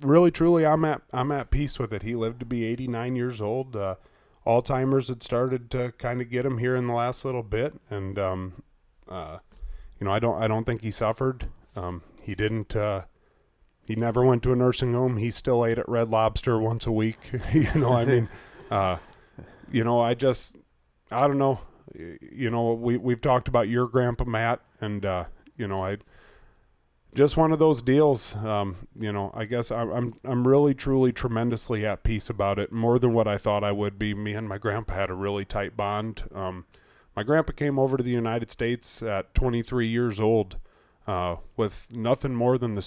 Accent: American